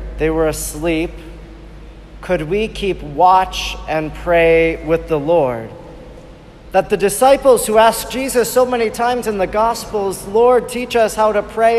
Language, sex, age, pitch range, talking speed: English, male, 40-59, 160-195 Hz, 155 wpm